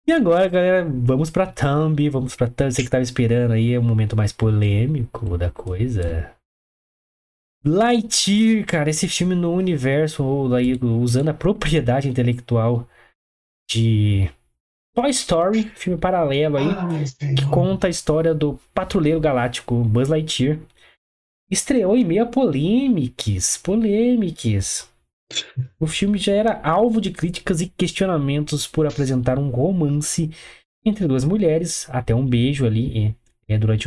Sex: male